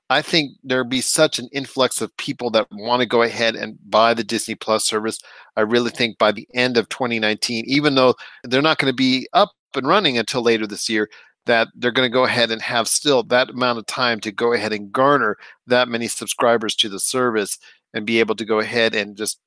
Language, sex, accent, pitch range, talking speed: English, male, American, 115-135 Hz, 230 wpm